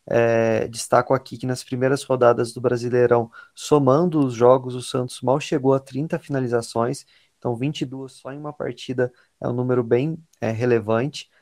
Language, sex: Portuguese, male